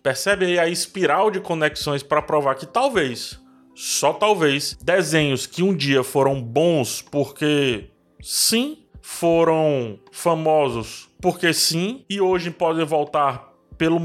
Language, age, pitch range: Portuguese, 20-39, 135-175 Hz